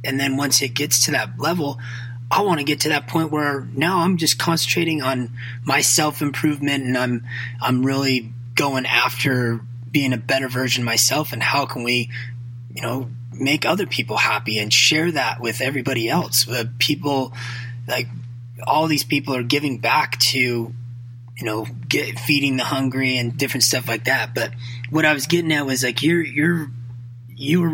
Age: 20-39